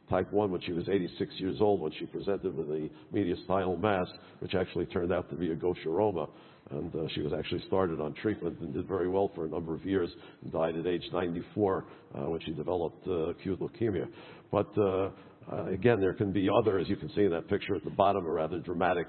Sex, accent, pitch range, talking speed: male, American, 85-100 Hz, 230 wpm